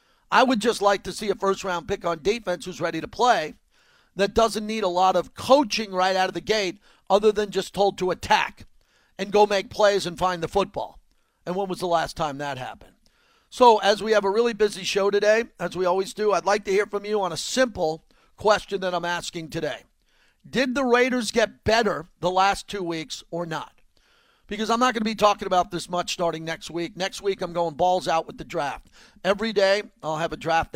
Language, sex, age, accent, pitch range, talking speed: English, male, 50-69, American, 170-205 Hz, 225 wpm